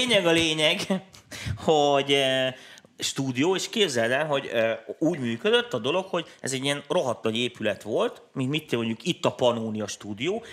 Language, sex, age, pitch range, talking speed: Hungarian, male, 30-49, 115-170 Hz, 160 wpm